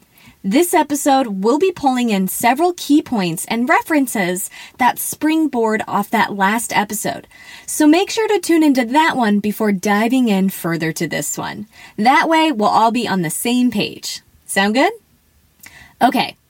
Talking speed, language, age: 160 wpm, English, 20-39